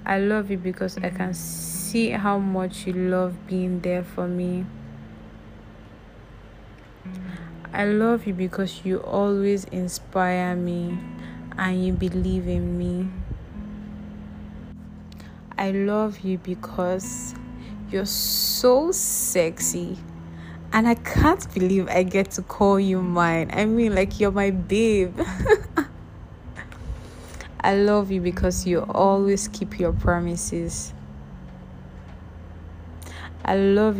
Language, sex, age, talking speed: English, female, 20-39, 110 wpm